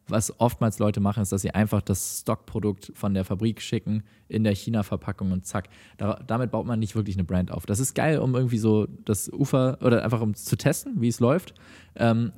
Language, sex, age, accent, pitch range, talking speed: German, male, 20-39, German, 100-120 Hz, 220 wpm